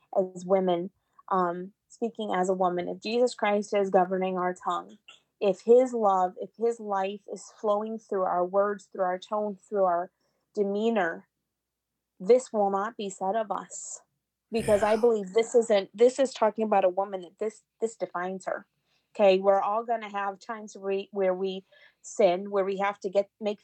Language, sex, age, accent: English, female, 30-49, American